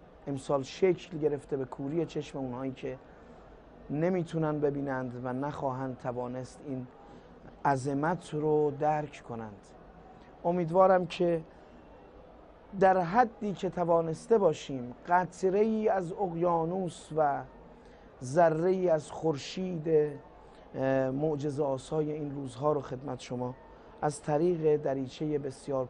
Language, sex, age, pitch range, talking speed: Persian, male, 30-49, 130-160 Hz, 100 wpm